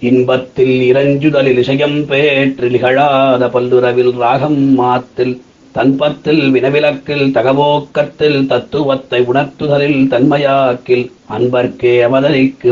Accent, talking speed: native, 75 wpm